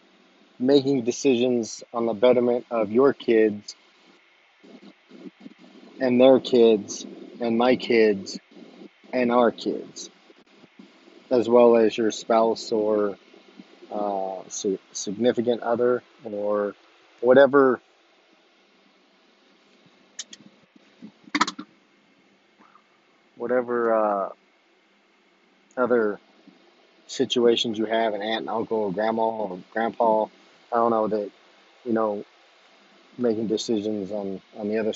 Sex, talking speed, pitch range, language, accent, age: male, 95 wpm, 105-125 Hz, English, American, 30-49